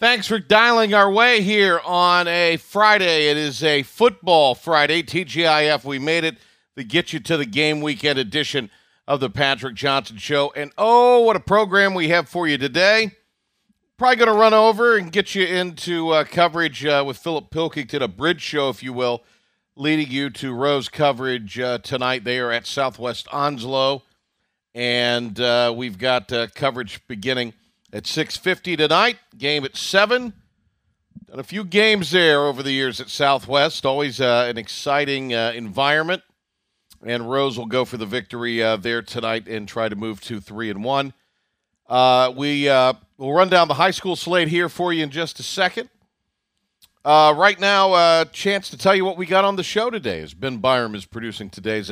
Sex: male